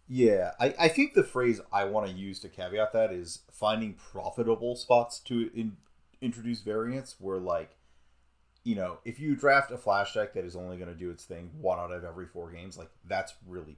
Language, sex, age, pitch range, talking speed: English, male, 30-49, 85-120 Hz, 210 wpm